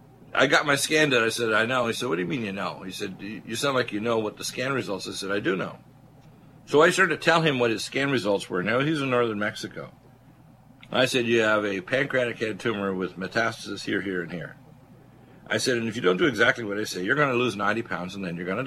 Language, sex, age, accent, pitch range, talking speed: English, male, 60-79, American, 95-125 Hz, 275 wpm